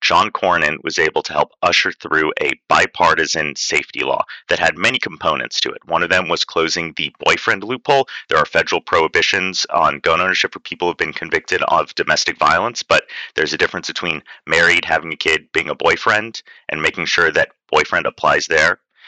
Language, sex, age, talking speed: English, male, 30-49, 190 wpm